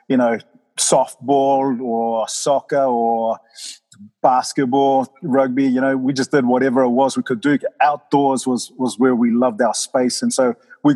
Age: 30-49